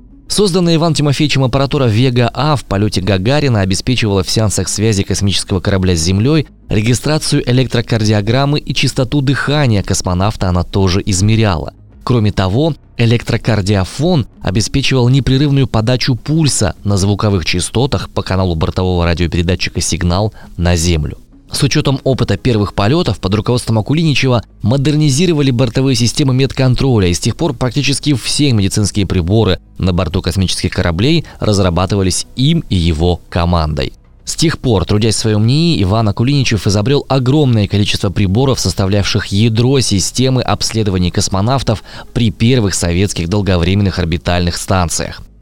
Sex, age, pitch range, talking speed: male, 20-39, 95-130 Hz, 125 wpm